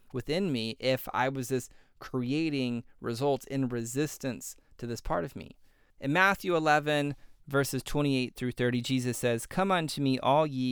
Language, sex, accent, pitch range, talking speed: English, male, American, 120-150 Hz, 160 wpm